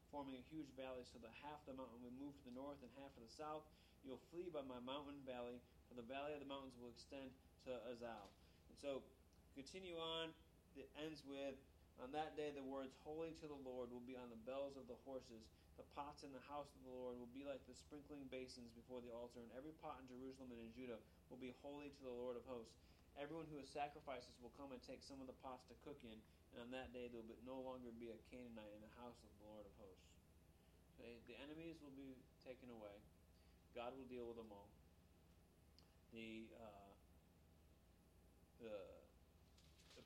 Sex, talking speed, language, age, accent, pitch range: male, 210 wpm, English, 30-49, American, 100-140 Hz